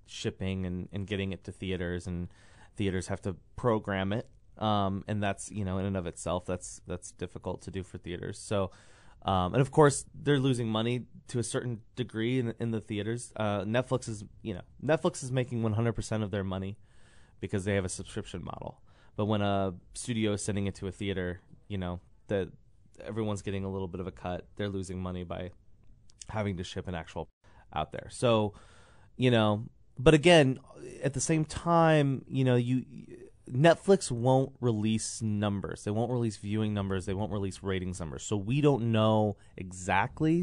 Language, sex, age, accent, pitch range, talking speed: English, male, 20-39, American, 100-120 Hz, 185 wpm